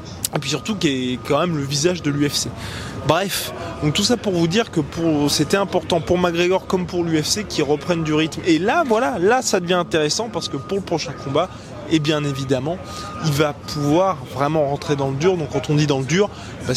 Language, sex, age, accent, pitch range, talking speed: French, male, 20-39, French, 135-175 Hz, 220 wpm